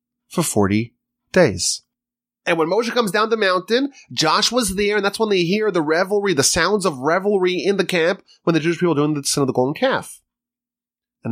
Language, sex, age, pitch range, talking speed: English, male, 30-49, 135-230 Hz, 205 wpm